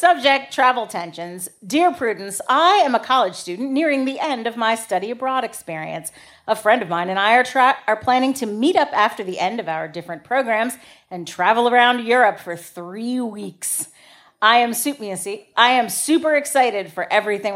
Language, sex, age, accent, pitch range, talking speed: English, female, 40-59, American, 205-285 Hz, 180 wpm